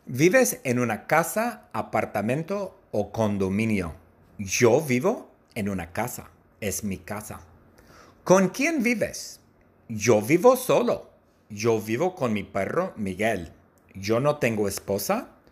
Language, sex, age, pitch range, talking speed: Spanish, male, 50-69, 95-130 Hz, 120 wpm